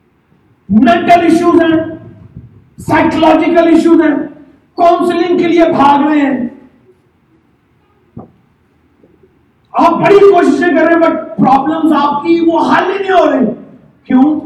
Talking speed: 110 wpm